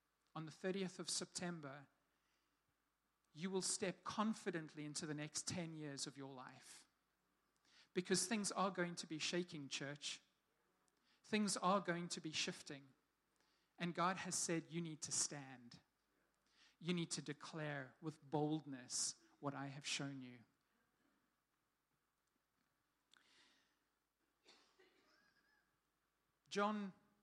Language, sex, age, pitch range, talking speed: English, male, 40-59, 150-190 Hz, 110 wpm